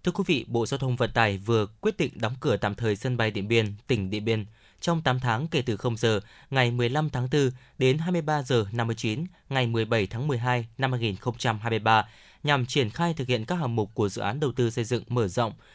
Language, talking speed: Vietnamese, 230 wpm